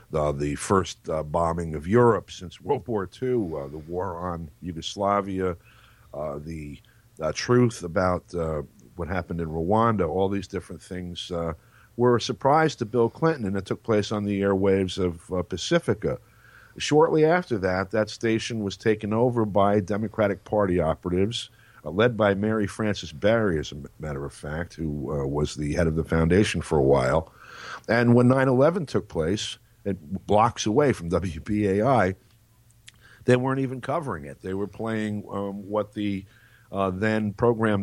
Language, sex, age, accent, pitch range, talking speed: English, male, 50-69, American, 85-110 Hz, 165 wpm